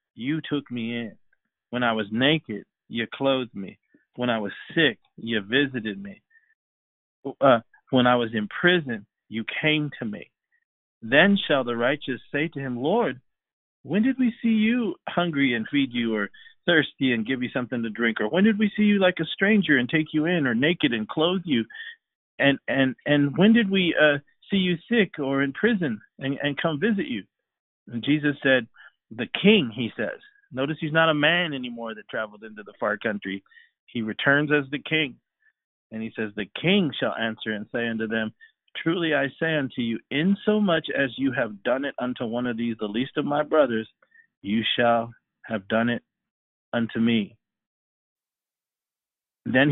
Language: English